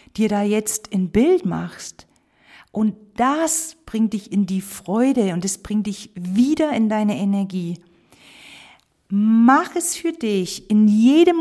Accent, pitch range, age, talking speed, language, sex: German, 190-255 Hz, 50-69, 140 wpm, German, female